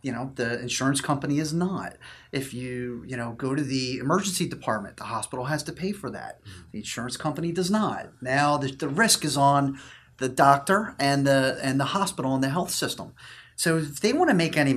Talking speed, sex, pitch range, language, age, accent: 210 wpm, male, 125-150 Hz, English, 30-49, American